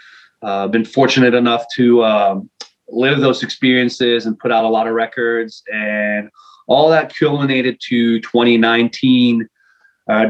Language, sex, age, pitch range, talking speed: English, male, 20-39, 115-125 Hz, 135 wpm